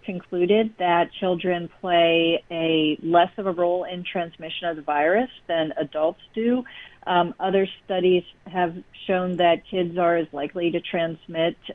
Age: 40-59